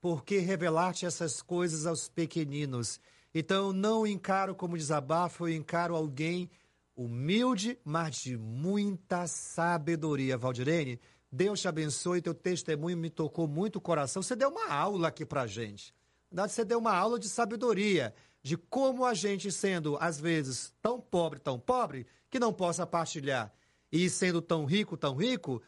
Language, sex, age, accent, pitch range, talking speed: Portuguese, male, 40-59, Brazilian, 140-185 Hz, 150 wpm